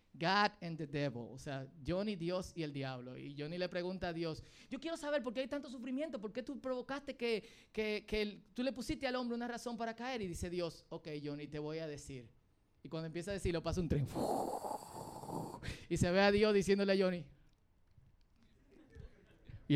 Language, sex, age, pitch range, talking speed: Spanish, male, 30-49, 150-230 Hz, 210 wpm